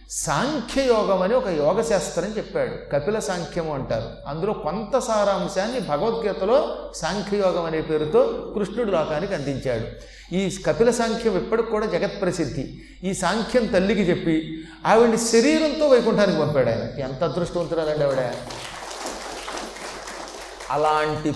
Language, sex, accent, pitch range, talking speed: Telugu, male, native, 155-225 Hz, 100 wpm